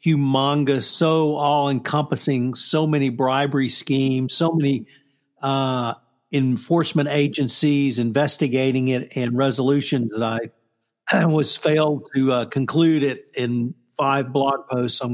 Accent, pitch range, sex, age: American, 120-145 Hz, male, 50-69